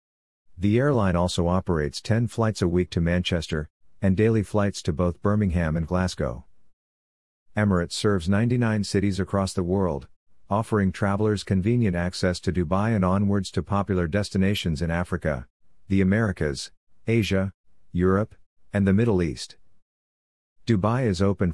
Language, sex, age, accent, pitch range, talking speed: English, male, 50-69, American, 90-105 Hz, 135 wpm